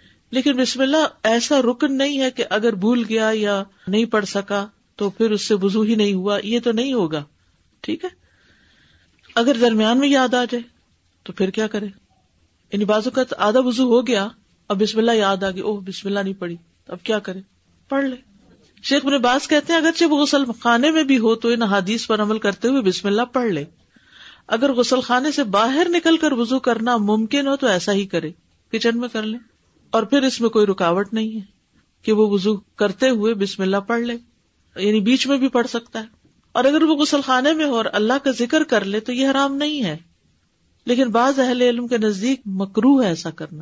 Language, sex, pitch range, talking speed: Urdu, female, 200-255 Hz, 215 wpm